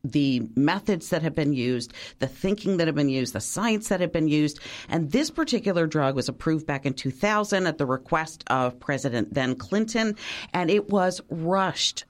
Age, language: 40-59, English